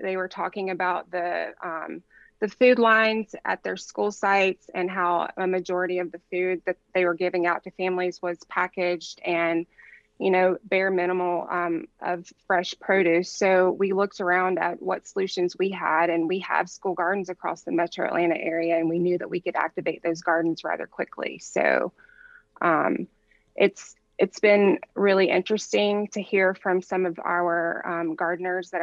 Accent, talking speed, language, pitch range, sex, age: American, 175 wpm, English, 170-190 Hz, female, 20-39